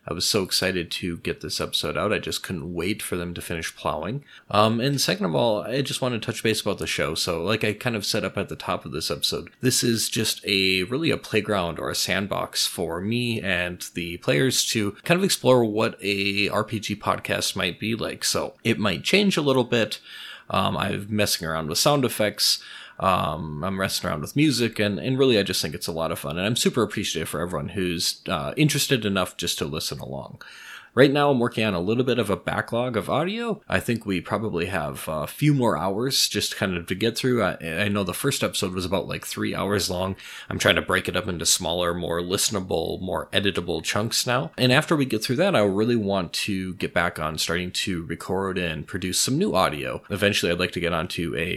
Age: 30-49